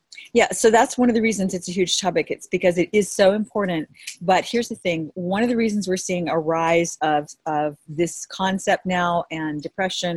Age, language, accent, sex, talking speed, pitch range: 40-59, English, American, female, 210 wpm, 160-185 Hz